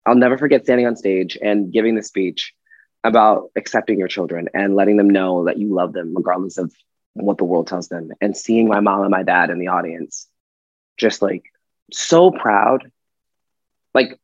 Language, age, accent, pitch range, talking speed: English, 20-39, American, 100-130 Hz, 185 wpm